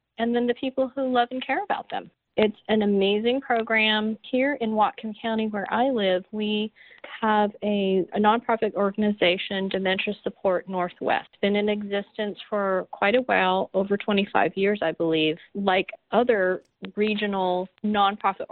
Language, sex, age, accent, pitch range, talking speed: English, female, 40-59, American, 190-230 Hz, 150 wpm